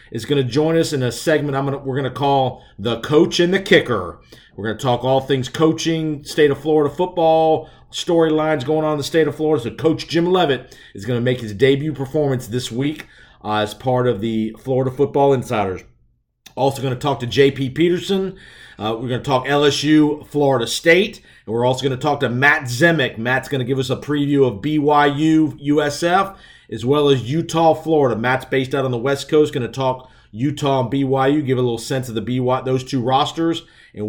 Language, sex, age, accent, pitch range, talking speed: English, male, 40-59, American, 130-155 Hz, 215 wpm